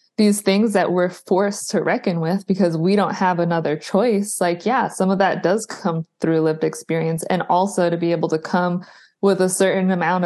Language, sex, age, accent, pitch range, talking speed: English, female, 20-39, American, 170-195 Hz, 205 wpm